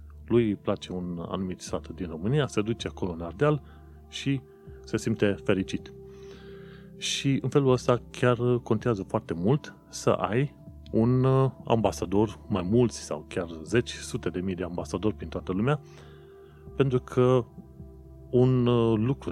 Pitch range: 85-120 Hz